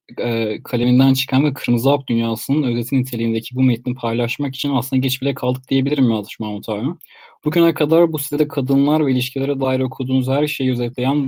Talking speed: 175 wpm